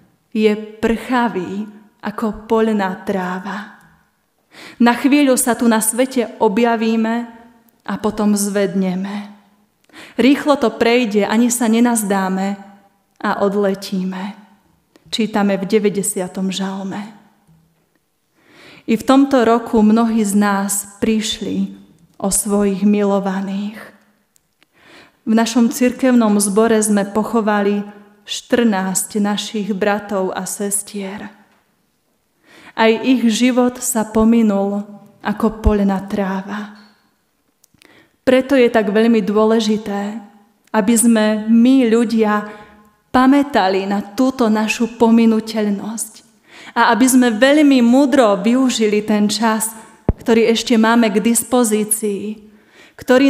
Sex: female